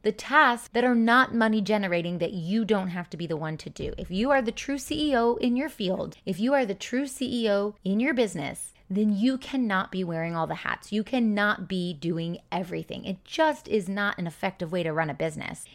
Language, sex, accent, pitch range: English, female, American, 175-225 Hz